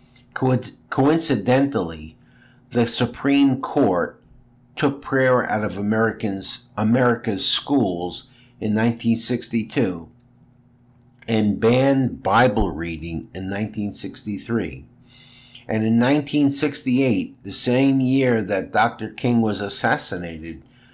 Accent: American